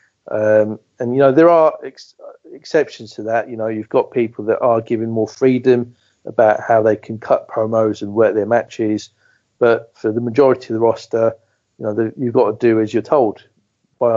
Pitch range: 110-120 Hz